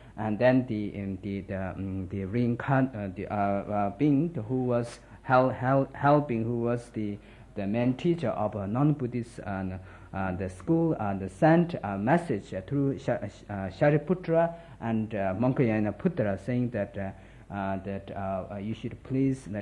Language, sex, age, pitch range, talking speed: Italian, male, 50-69, 100-130 Hz, 175 wpm